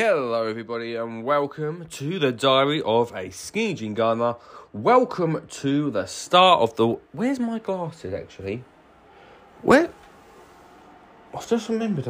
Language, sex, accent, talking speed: English, male, British, 130 wpm